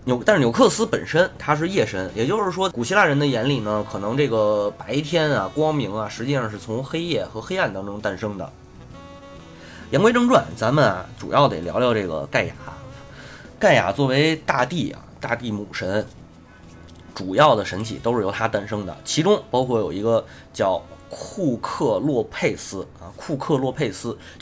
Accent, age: native, 20-39